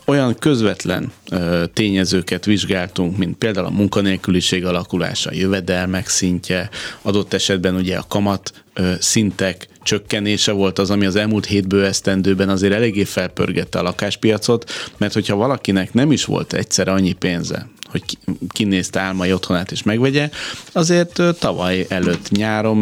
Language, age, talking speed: Hungarian, 30-49, 130 wpm